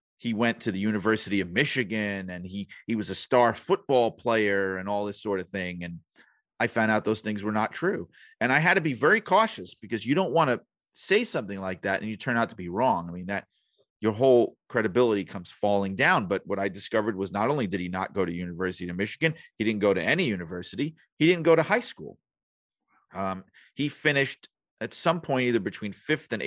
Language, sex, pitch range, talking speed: English, male, 95-125 Hz, 225 wpm